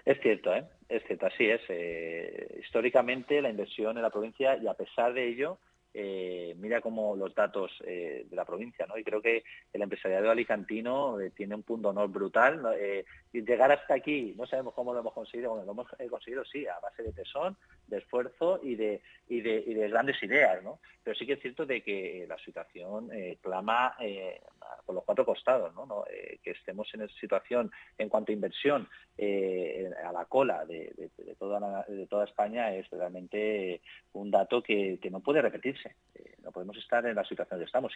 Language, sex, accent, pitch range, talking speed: Spanish, male, Spanish, 100-125 Hz, 210 wpm